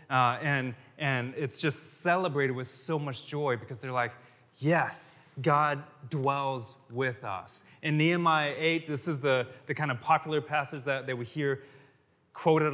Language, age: English, 20-39